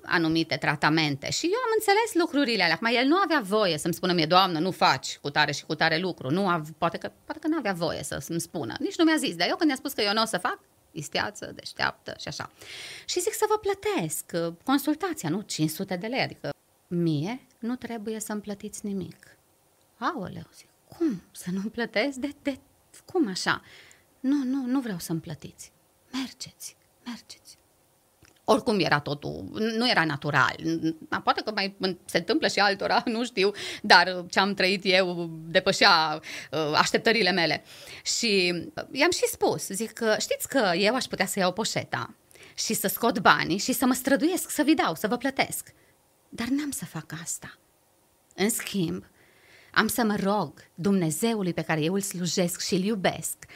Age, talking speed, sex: 30-49, 180 wpm, female